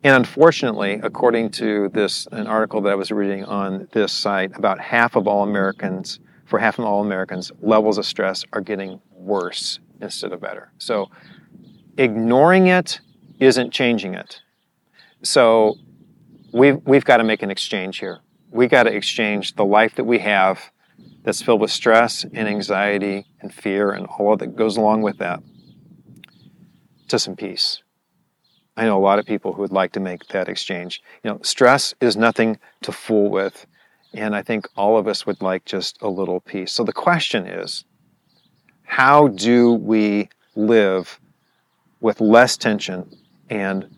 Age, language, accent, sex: 40-59, English, American, male